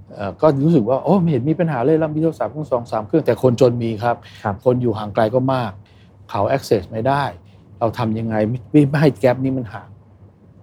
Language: Thai